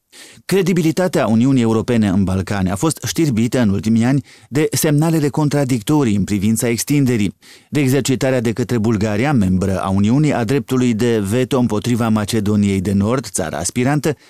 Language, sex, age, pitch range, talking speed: Romanian, male, 30-49, 105-140 Hz, 145 wpm